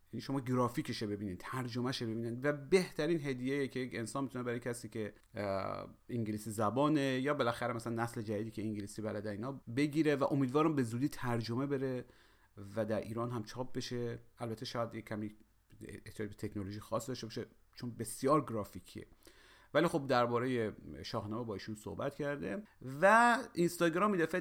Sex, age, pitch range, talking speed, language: male, 40-59, 115-155 Hz, 150 wpm, Persian